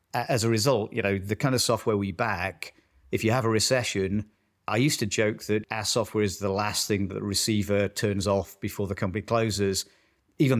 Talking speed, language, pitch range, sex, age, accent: 210 wpm, English, 100-115 Hz, male, 40-59, British